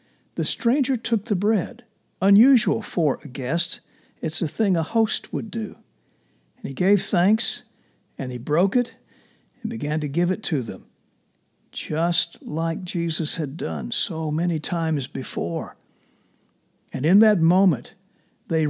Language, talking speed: English, 145 wpm